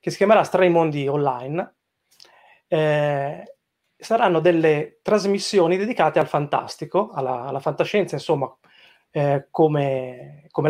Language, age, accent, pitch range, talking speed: Italian, 30-49, native, 145-190 Hz, 105 wpm